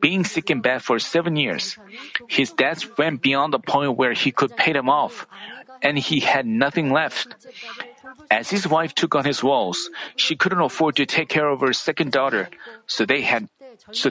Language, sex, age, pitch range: Korean, male, 40-59, 135-165 Hz